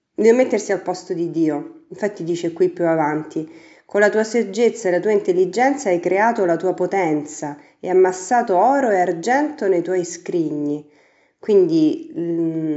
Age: 30-49